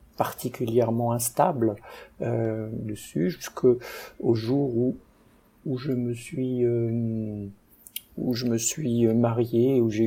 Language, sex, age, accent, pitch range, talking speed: French, male, 50-69, French, 110-125 Hz, 115 wpm